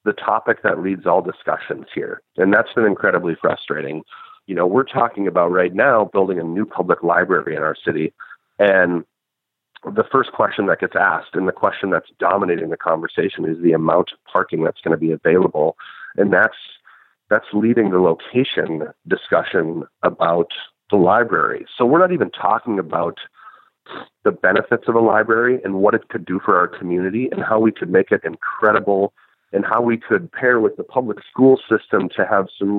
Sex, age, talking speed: male, 40-59, 185 wpm